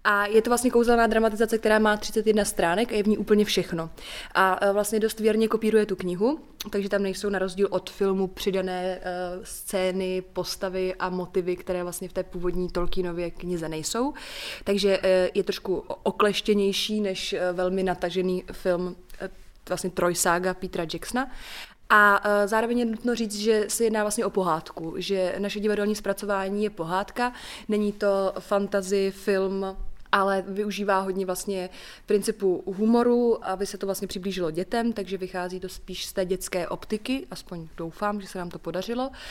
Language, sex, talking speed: Czech, female, 155 wpm